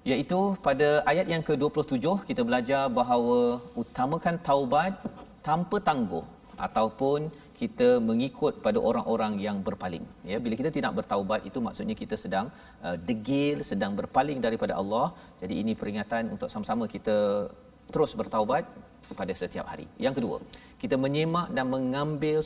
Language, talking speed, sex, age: Malayalam, 135 wpm, male, 40-59